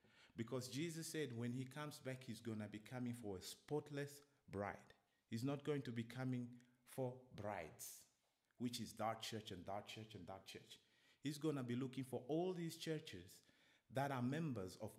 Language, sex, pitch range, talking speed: English, male, 110-145 Hz, 190 wpm